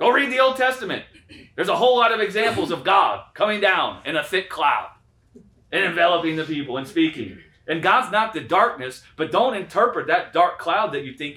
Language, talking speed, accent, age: English, 205 wpm, American, 30-49